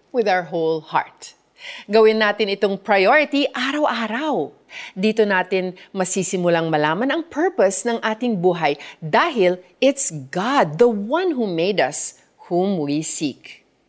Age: 40-59